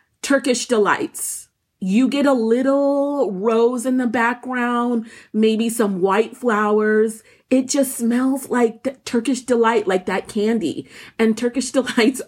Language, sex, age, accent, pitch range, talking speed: English, female, 30-49, American, 200-250 Hz, 130 wpm